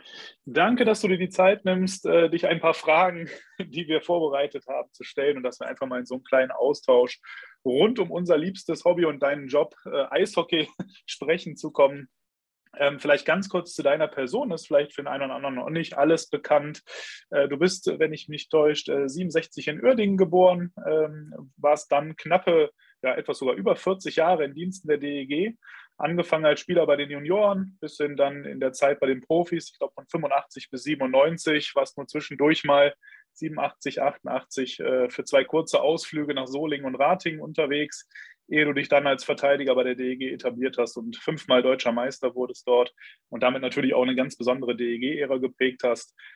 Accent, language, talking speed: German, German, 195 wpm